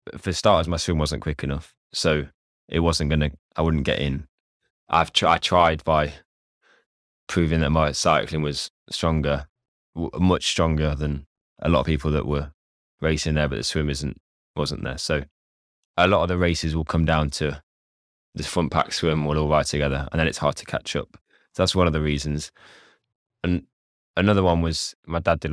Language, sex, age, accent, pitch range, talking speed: English, male, 10-29, British, 70-80 Hz, 195 wpm